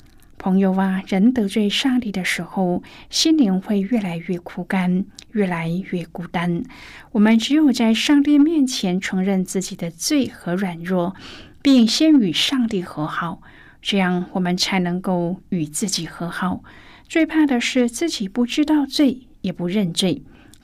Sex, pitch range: female, 185-270 Hz